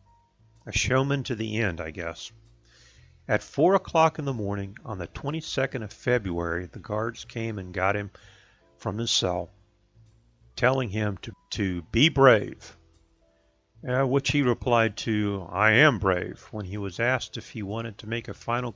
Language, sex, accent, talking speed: English, male, American, 165 wpm